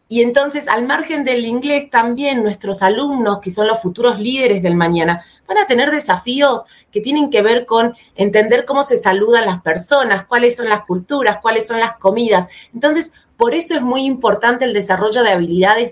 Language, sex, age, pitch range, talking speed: Spanish, female, 30-49, 185-250 Hz, 185 wpm